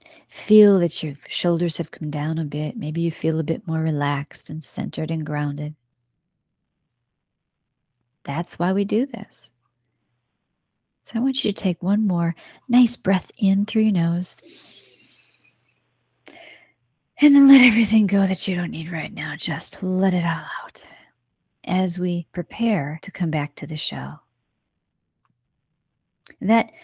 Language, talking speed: English, 145 wpm